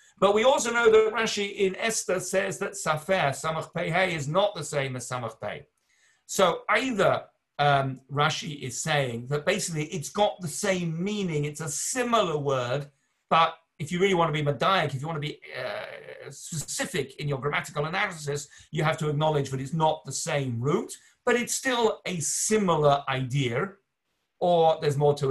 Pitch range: 130-170 Hz